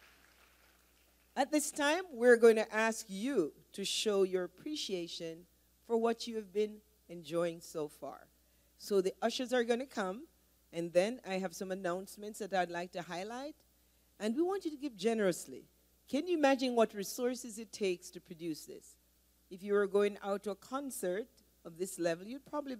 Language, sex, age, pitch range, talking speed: English, female, 40-59, 170-230 Hz, 180 wpm